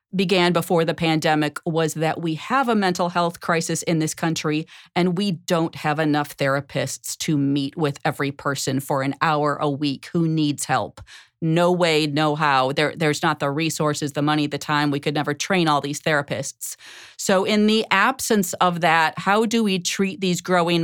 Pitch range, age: 150-185 Hz, 40-59